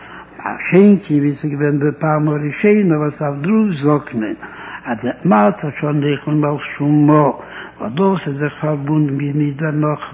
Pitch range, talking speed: 145-155 Hz, 120 wpm